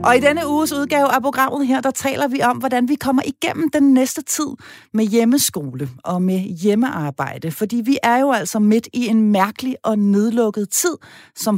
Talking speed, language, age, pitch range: 190 wpm, Danish, 30-49, 190-275 Hz